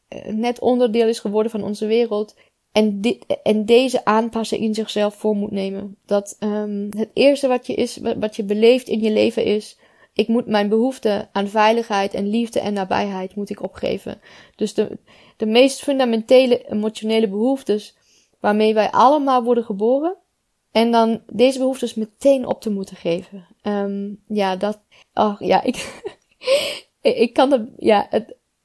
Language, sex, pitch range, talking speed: Dutch, female, 200-230 Hz, 160 wpm